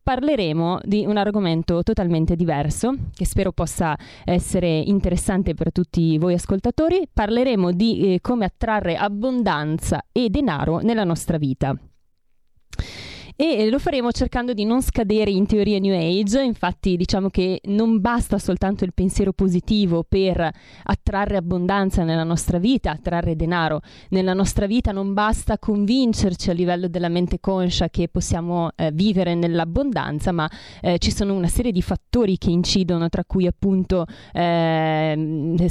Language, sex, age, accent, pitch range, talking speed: Italian, female, 30-49, native, 170-210 Hz, 140 wpm